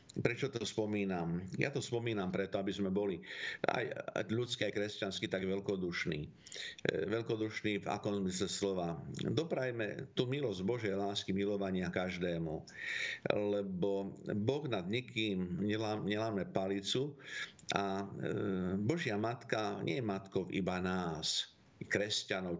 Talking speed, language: 110 wpm, Slovak